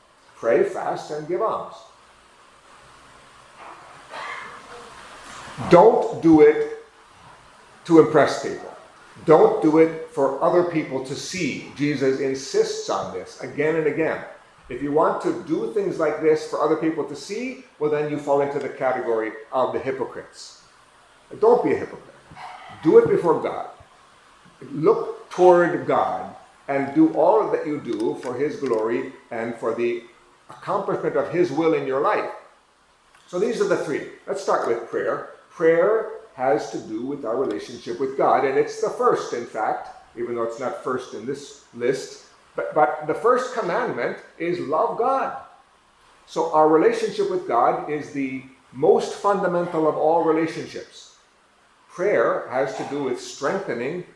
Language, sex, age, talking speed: English, male, 50-69, 150 wpm